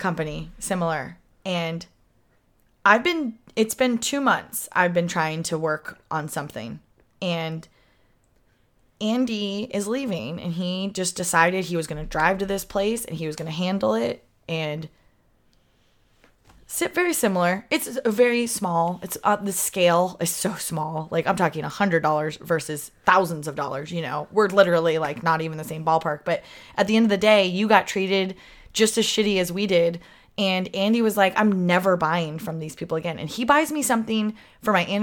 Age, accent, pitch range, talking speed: 20-39, American, 165-215 Hz, 180 wpm